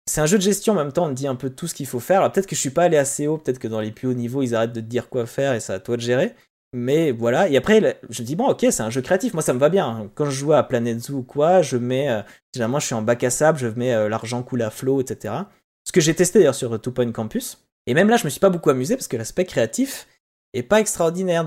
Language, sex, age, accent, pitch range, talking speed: French, male, 20-39, French, 115-170 Hz, 320 wpm